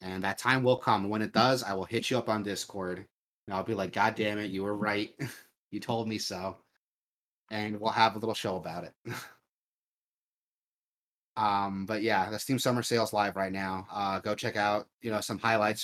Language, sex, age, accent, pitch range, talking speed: English, male, 30-49, American, 100-115 Hz, 210 wpm